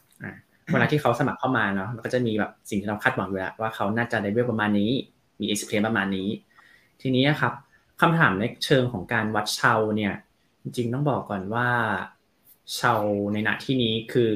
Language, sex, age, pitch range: Thai, male, 20-39, 105-130 Hz